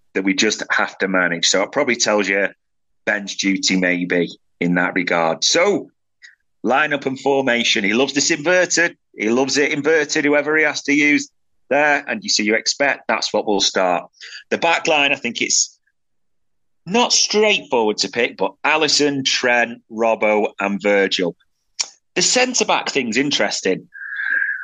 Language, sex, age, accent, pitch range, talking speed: English, male, 30-49, British, 100-145 Hz, 160 wpm